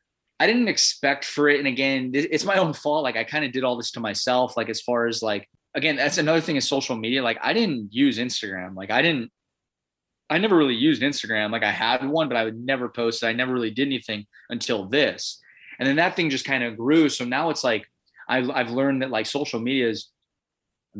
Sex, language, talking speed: male, English, 235 wpm